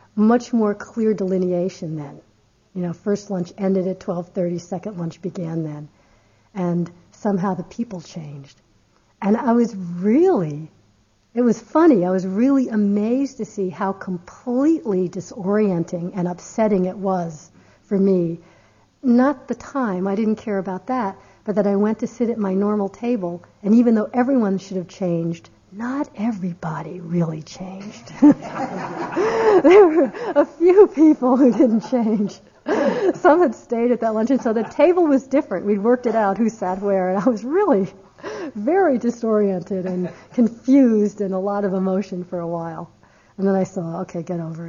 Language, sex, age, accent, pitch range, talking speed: English, female, 60-79, American, 175-235 Hz, 160 wpm